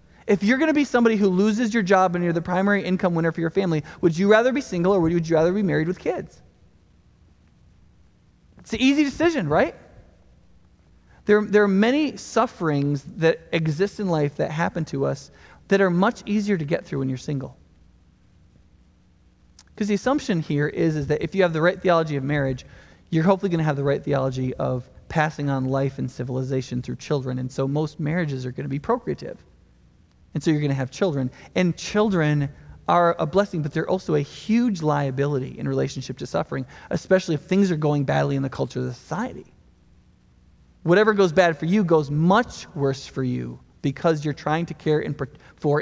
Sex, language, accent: male, English, American